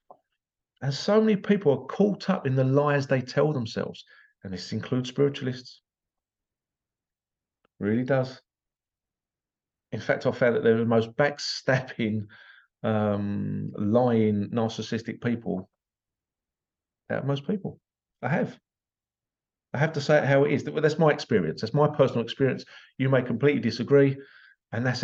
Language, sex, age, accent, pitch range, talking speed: English, male, 40-59, British, 115-140 Hz, 150 wpm